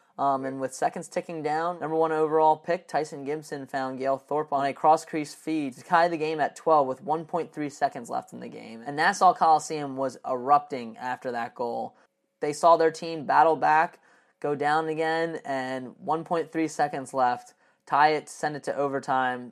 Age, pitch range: 20-39, 135-160 Hz